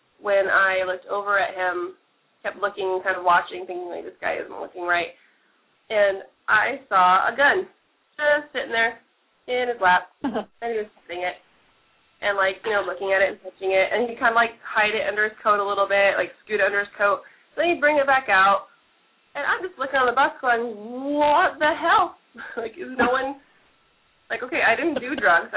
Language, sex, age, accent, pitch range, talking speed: English, female, 20-39, American, 190-230 Hz, 210 wpm